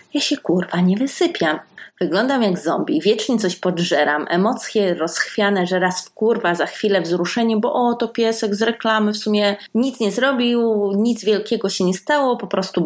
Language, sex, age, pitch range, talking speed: Polish, female, 30-49, 180-230 Hz, 175 wpm